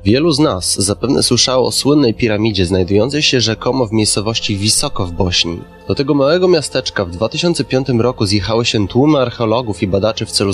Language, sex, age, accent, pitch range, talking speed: Polish, male, 20-39, native, 100-130 Hz, 175 wpm